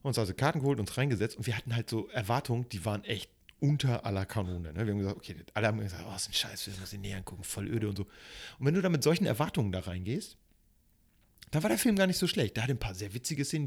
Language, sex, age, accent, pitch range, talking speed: German, male, 40-59, German, 105-135 Hz, 280 wpm